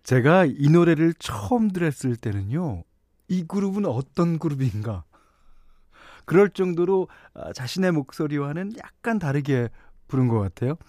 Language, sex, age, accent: Korean, male, 40-59, native